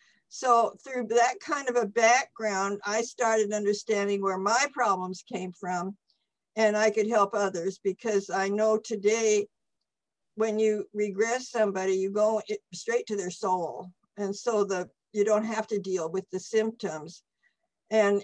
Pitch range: 195-225 Hz